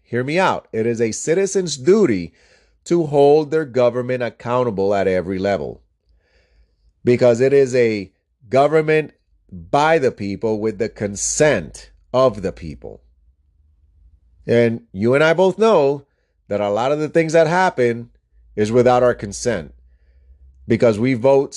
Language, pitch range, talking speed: English, 95-135 Hz, 140 wpm